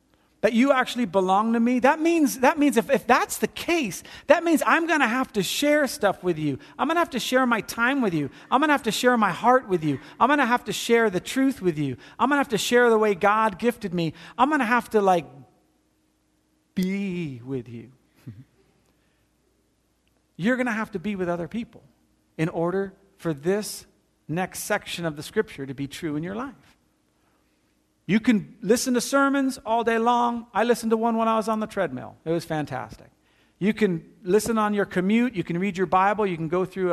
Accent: American